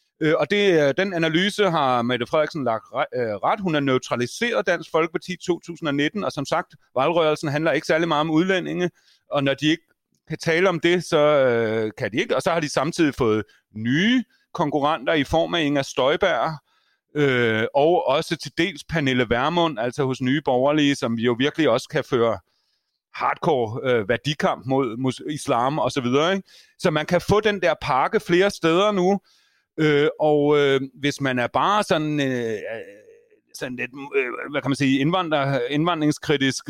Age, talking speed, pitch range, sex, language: 30-49, 160 wpm, 135-175 Hz, male, Swedish